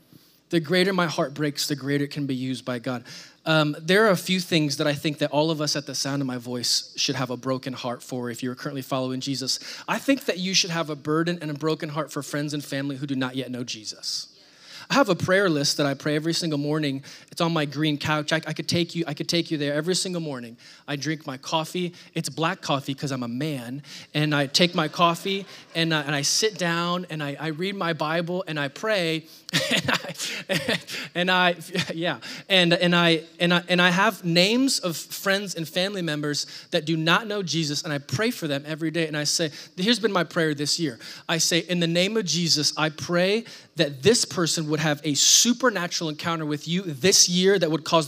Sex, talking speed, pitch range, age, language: male, 225 wpm, 150-180 Hz, 20-39, English